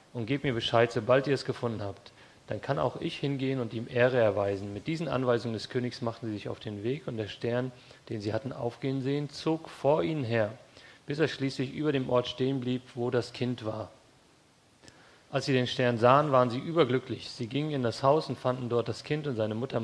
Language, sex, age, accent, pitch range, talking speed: English, male, 40-59, German, 115-135 Hz, 225 wpm